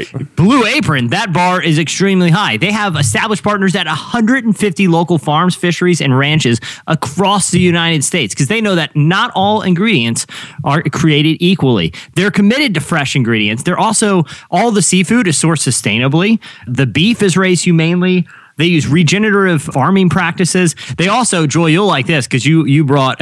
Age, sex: 30-49, male